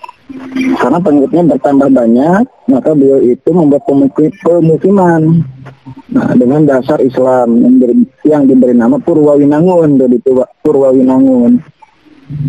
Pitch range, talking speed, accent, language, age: 135-195 Hz, 85 wpm, native, Indonesian, 20-39